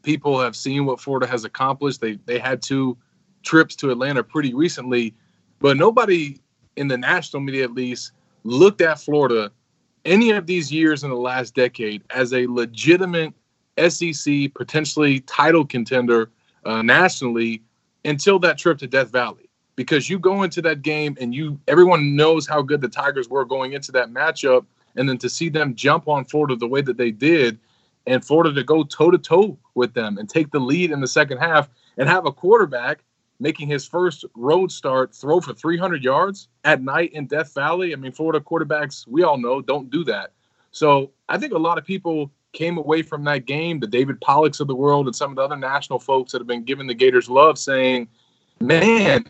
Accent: American